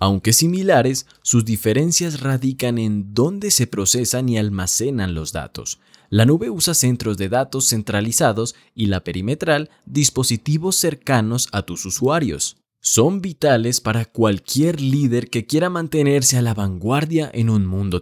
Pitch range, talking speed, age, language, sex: 100-140 Hz, 140 wpm, 20-39, Spanish, male